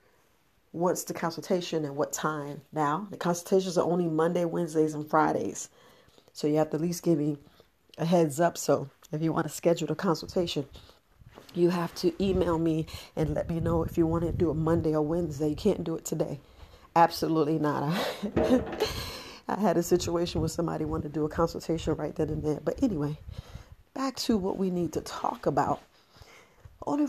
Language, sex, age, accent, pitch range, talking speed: English, female, 40-59, American, 155-185 Hz, 190 wpm